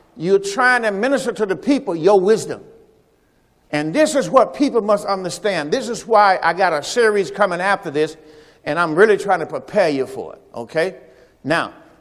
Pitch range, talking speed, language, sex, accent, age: 175-230 Hz, 185 wpm, English, male, American, 50-69